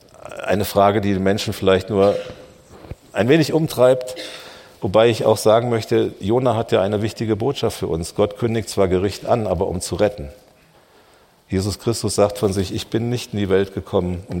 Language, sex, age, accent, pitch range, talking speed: German, male, 50-69, German, 95-110 Hz, 185 wpm